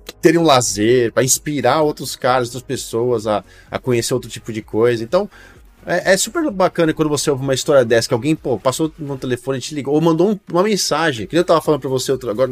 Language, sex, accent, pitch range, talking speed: Portuguese, male, Brazilian, 125-165 Hz, 225 wpm